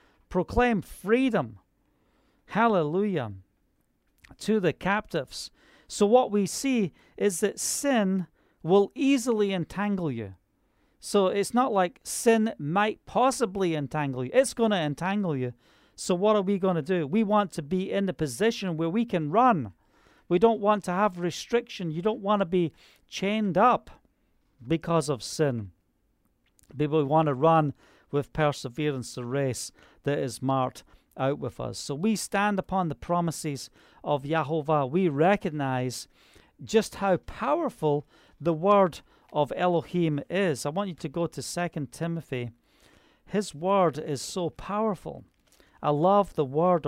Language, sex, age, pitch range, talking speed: English, male, 40-59, 145-200 Hz, 145 wpm